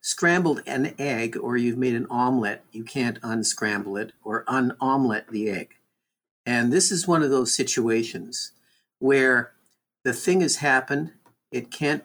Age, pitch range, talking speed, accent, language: 50-69, 125-170 Hz, 150 wpm, American, English